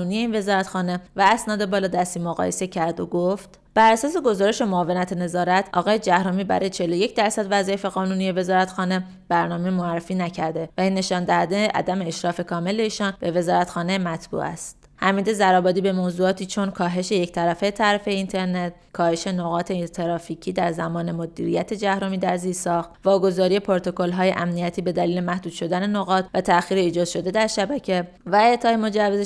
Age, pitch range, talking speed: 20-39, 180-205 Hz, 155 wpm